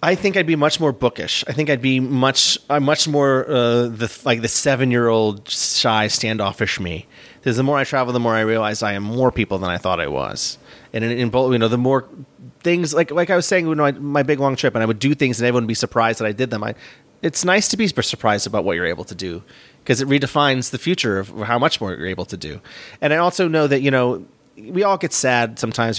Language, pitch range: English, 115-145 Hz